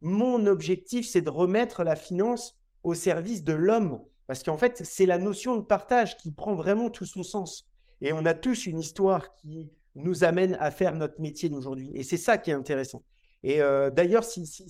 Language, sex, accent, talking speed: French, male, French, 205 wpm